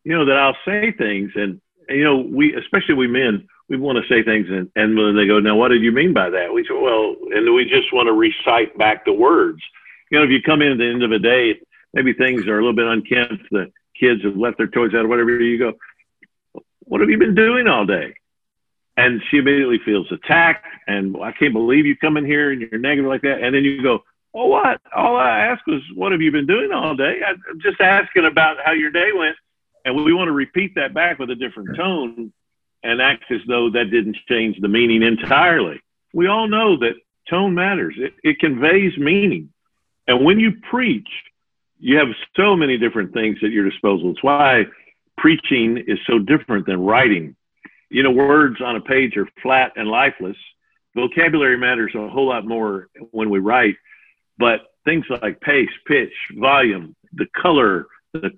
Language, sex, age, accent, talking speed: English, male, 50-69, American, 210 wpm